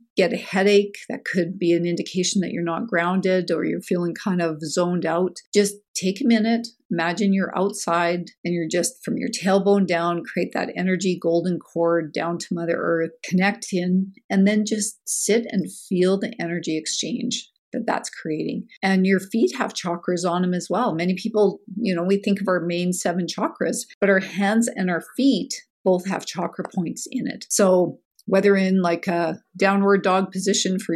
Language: English